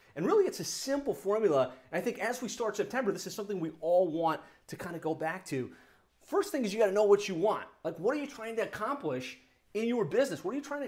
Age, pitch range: 30-49, 160-215 Hz